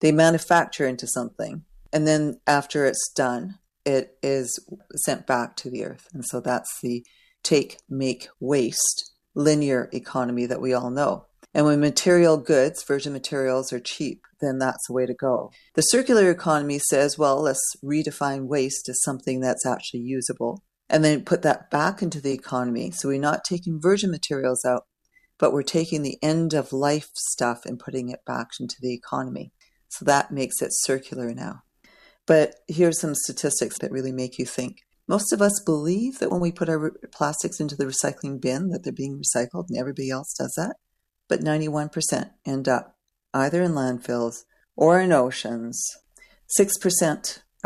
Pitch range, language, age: 125-155 Hz, English, 40-59